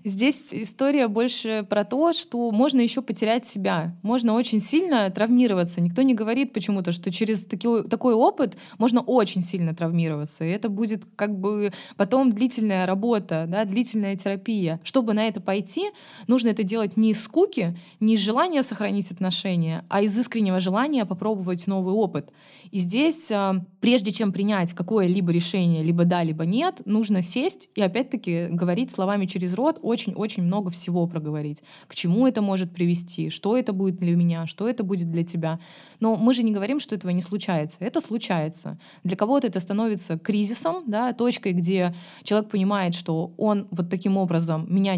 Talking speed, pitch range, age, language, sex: 165 wpm, 180-230 Hz, 20-39, Russian, female